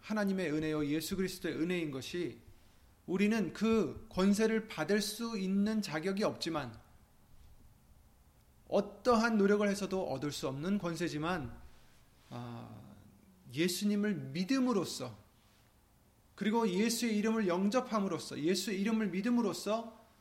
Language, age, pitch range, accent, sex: Korean, 30-49, 130-210 Hz, native, male